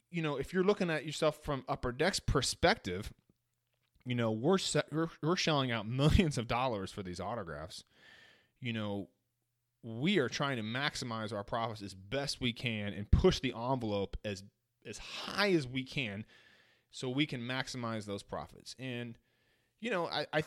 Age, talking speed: 30-49, 175 wpm